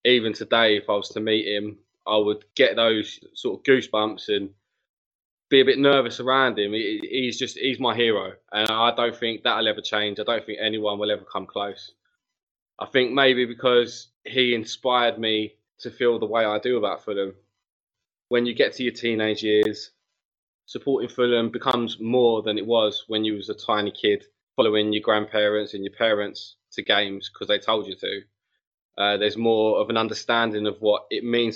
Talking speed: 190 wpm